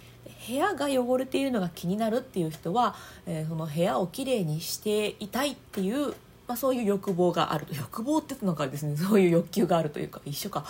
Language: Japanese